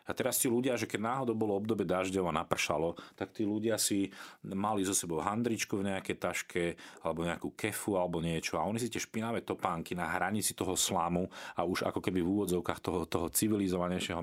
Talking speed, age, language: 195 wpm, 40-59, Slovak